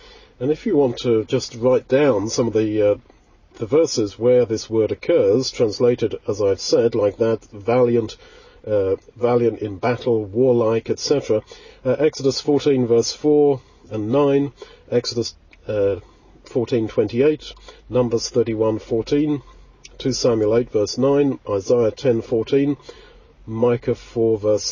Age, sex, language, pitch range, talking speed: 40-59, male, English, 115-150 Hz, 125 wpm